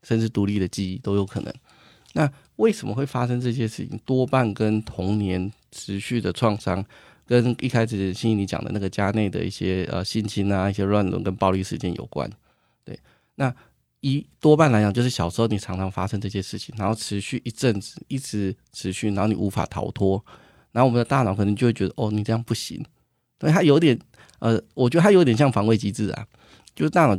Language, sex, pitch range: Chinese, male, 100-120 Hz